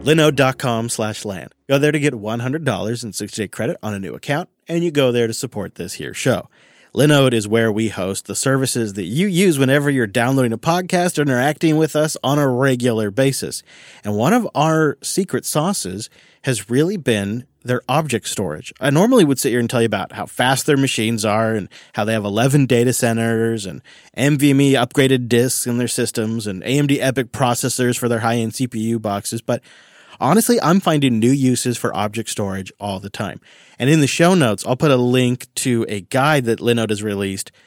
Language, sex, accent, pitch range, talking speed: English, male, American, 115-145 Hz, 200 wpm